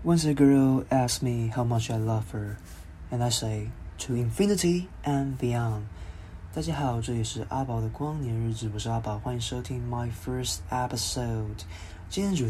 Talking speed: 105 wpm